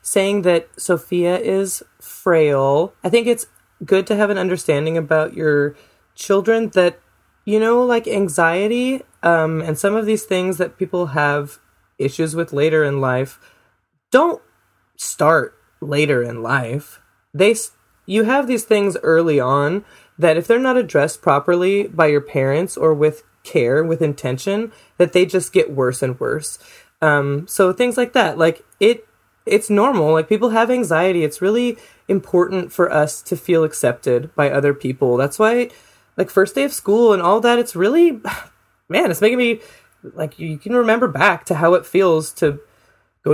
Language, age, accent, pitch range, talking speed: English, 20-39, American, 150-210 Hz, 165 wpm